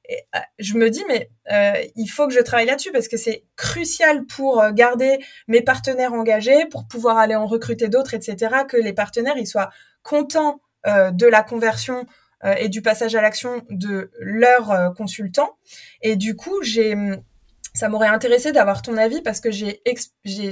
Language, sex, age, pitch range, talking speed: French, female, 20-39, 215-275 Hz, 185 wpm